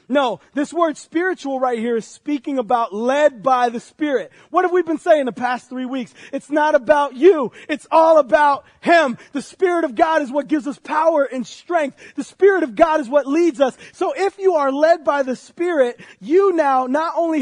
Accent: American